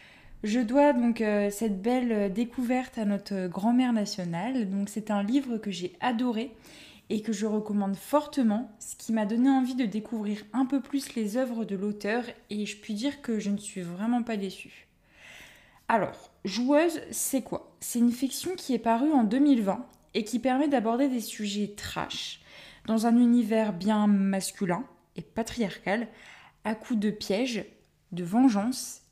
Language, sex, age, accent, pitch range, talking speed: French, female, 20-39, French, 205-260 Hz, 165 wpm